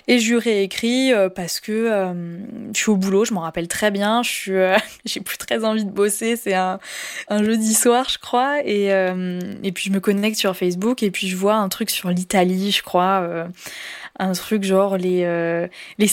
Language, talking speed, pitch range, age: French, 215 wpm, 185-220 Hz, 20-39